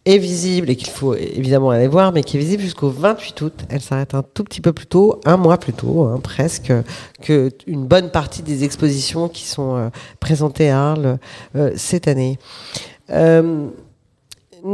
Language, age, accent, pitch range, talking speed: French, 50-69, French, 130-170 Hz, 180 wpm